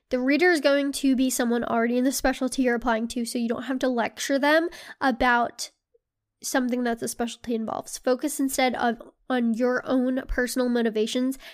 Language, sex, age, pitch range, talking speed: English, female, 10-29, 235-270 Hz, 180 wpm